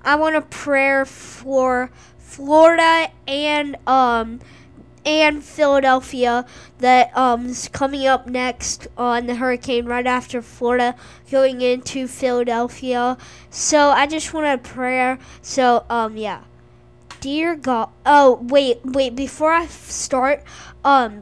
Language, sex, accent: English, female, American